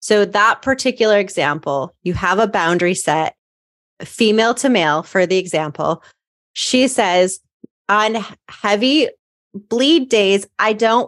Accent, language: American, English